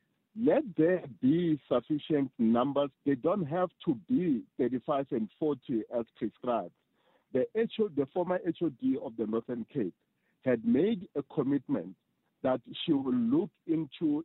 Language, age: English, 50-69